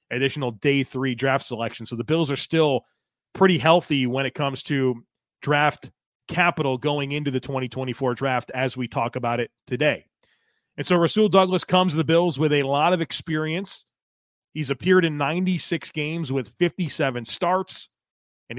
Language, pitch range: English, 135-175 Hz